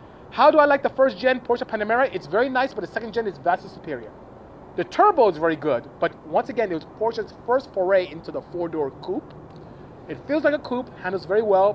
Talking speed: 225 wpm